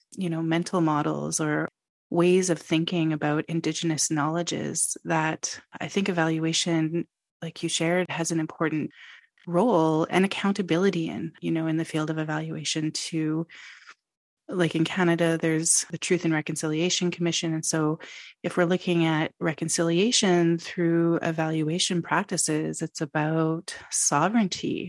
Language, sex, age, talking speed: English, female, 30-49, 135 wpm